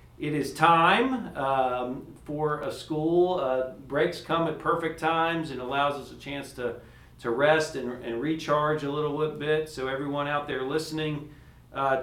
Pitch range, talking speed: 120-150 Hz, 165 wpm